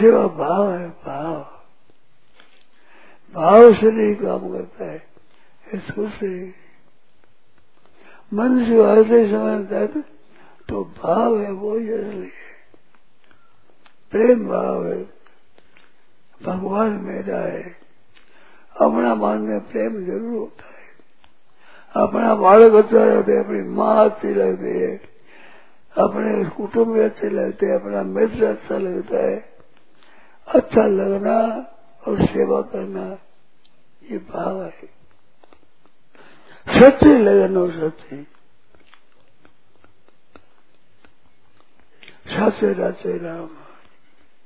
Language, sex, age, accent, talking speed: Hindi, male, 60-79, native, 90 wpm